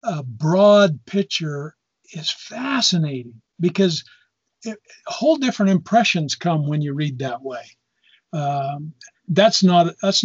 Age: 50-69